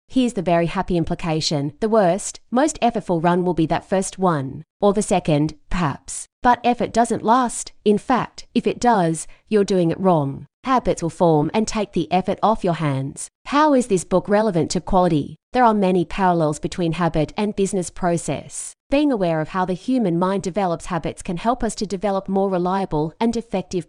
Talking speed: 190 wpm